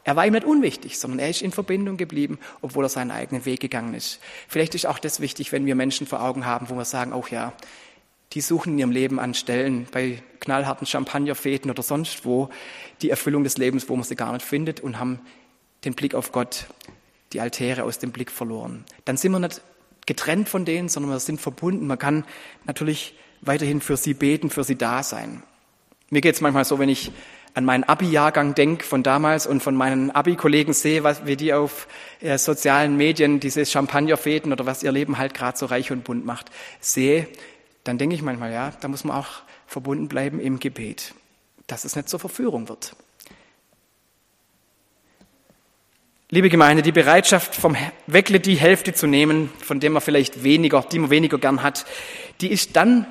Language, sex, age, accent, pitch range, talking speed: German, male, 30-49, German, 135-155 Hz, 190 wpm